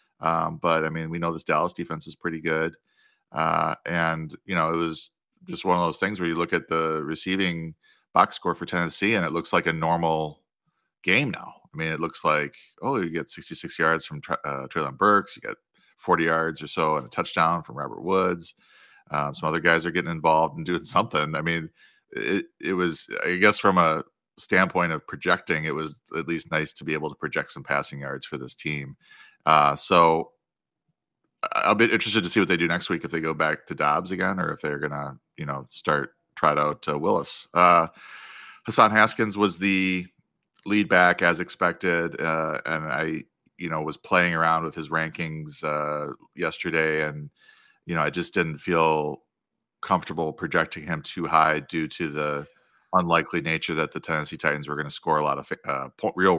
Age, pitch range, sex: 30-49, 80-85 Hz, male